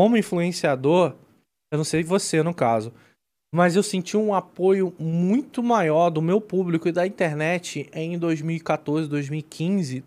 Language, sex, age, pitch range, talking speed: Portuguese, male, 20-39, 160-220 Hz, 145 wpm